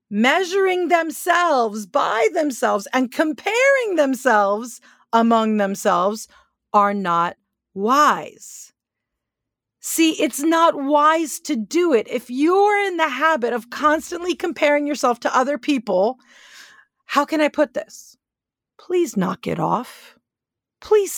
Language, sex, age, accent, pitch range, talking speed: English, female, 40-59, American, 205-300 Hz, 115 wpm